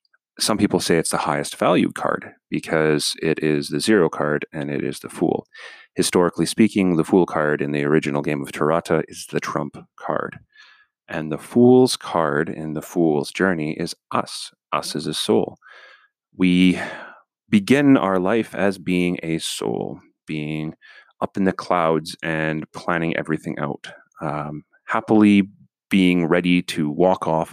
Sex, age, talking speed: male, 30-49, 155 wpm